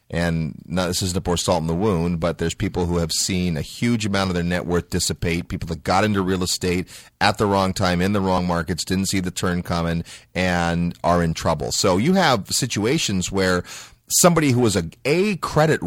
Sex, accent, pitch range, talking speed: male, American, 90-120 Hz, 220 wpm